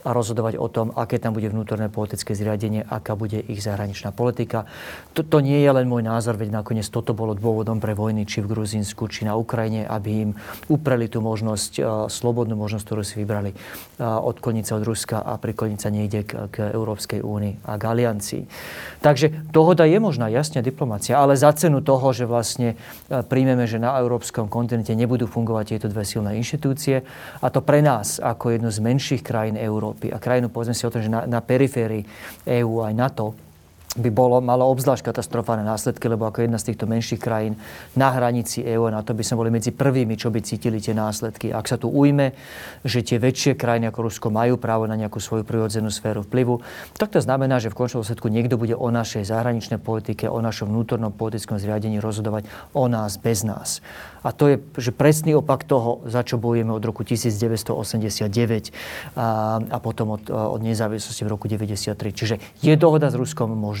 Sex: male